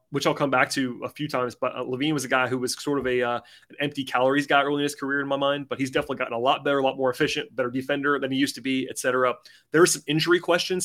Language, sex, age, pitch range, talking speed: English, male, 30-49, 125-150 Hz, 310 wpm